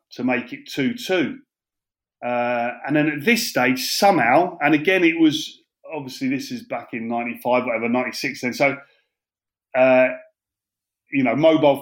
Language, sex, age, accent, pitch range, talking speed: English, male, 30-49, British, 130-165 Hz, 155 wpm